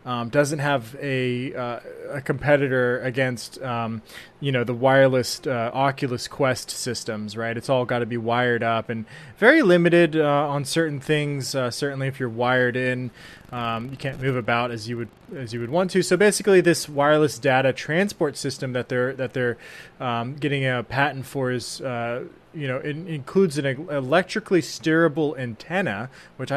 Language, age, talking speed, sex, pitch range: English, 20-39, 175 wpm, male, 125-160 Hz